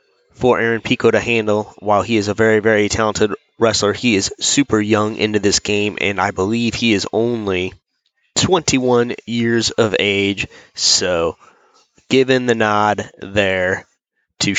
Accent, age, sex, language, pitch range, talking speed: American, 20-39, male, English, 105-120 Hz, 150 wpm